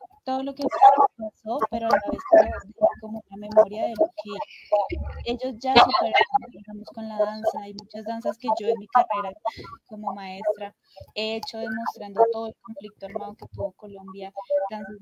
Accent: Colombian